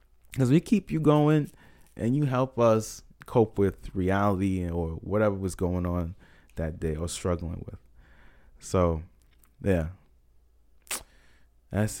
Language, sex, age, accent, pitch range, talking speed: English, male, 20-39, American, 85-110 Hz, 125 wpm